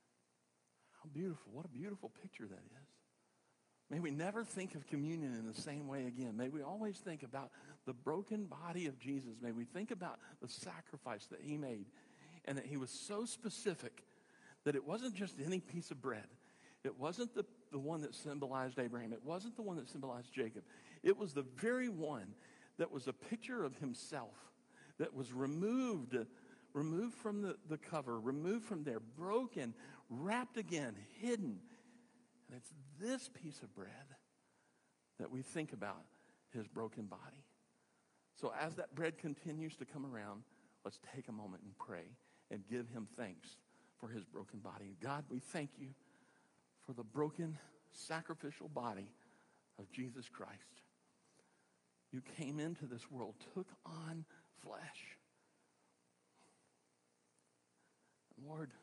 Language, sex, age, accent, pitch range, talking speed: English, male, 50-69, American, 115-180 Hz, 150 wpm